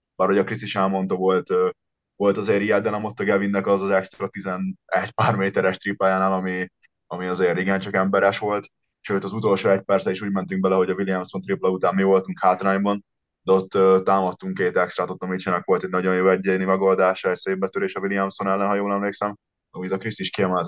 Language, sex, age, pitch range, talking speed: Hungarian, male, 20-39, 90-100 Hz, 195 wpm